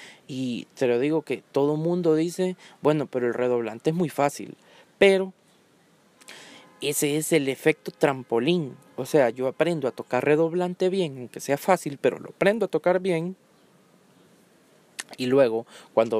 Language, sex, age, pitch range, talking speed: Spanish, male, 20-39, 135-185 Hz, 150 wpm